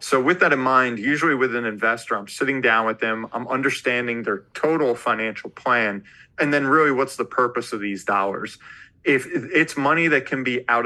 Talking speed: 200 wpm